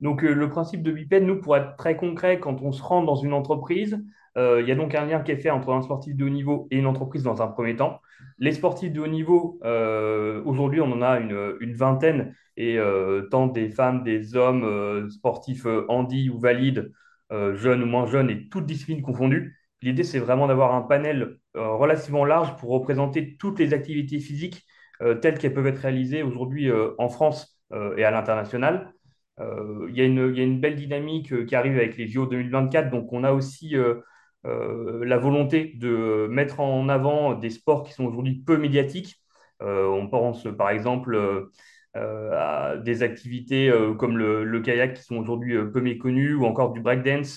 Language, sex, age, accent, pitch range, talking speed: French, male, 30-49, French, 120-145 Hz, 200 wpm